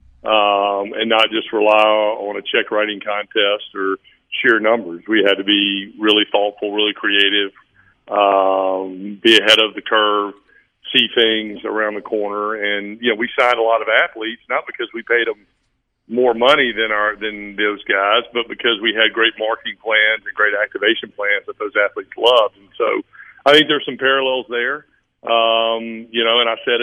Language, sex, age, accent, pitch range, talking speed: English, male, 50-69, American, 105-115 Hz, 185 wpm